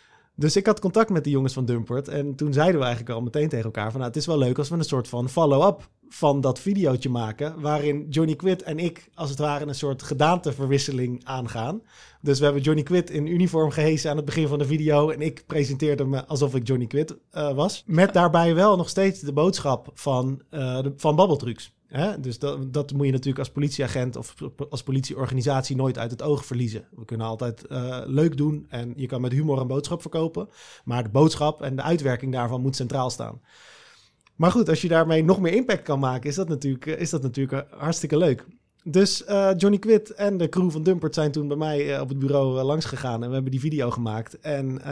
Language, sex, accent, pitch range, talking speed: Dutch, male, Dutch, 130-160 Hz, 225 wpm